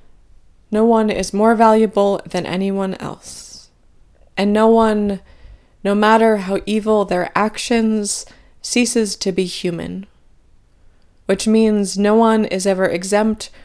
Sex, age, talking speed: female, 20-39, 125 wpm